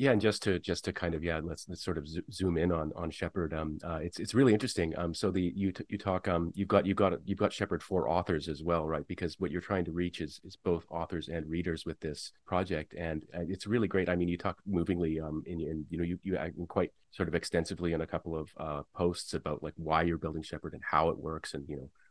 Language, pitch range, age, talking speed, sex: English, 80-95 Hz, 30-49, 270 wpm, male